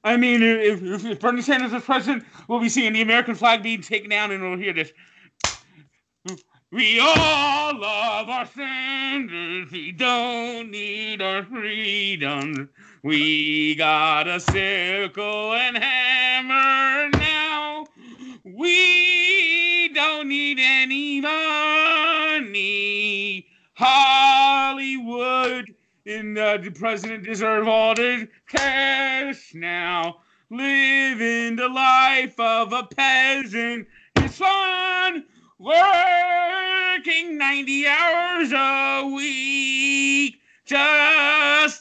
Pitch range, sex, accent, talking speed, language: 210-275 Hz, male, American, 95 wpm, English